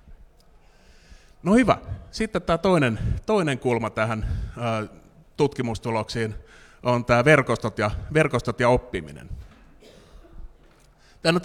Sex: male